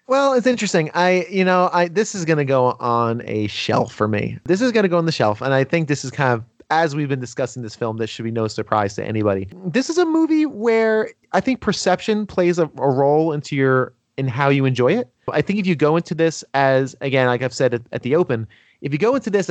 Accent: American